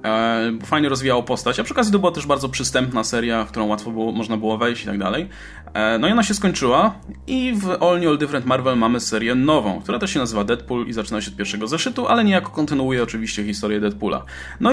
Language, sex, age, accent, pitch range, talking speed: Polish, male, 20-39, native, 125-175 Hz, 220 wpm